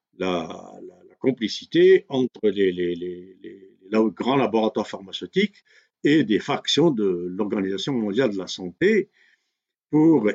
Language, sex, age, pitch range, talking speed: Arabic, male, 60-79, 95-130 Hz, 135 wpm